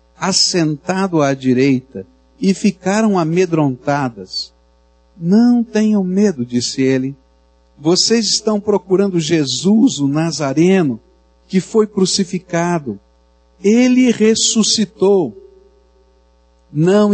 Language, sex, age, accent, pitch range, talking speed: Portuguese, male, 60-79, Brazilian, 125-195 Hz, 80 wpm